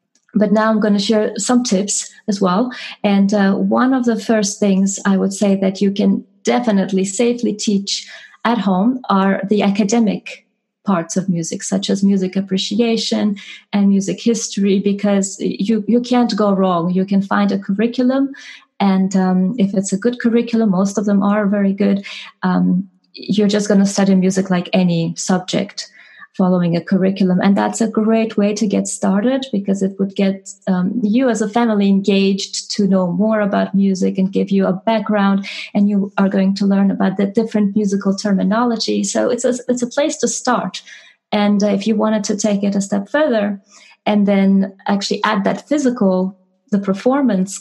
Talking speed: 180 wpm